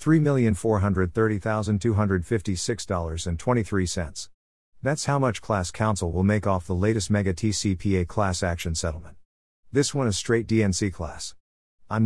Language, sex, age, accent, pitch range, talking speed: English, male, 50-69, American, 90-115 Hz, 110 wpm